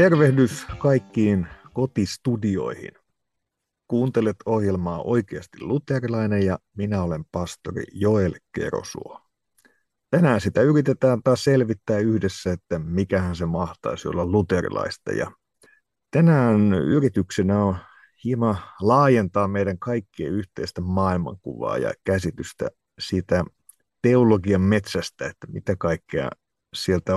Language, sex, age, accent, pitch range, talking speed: Finnish, male, 50-69, native, 95-120 Hz, 95 wpm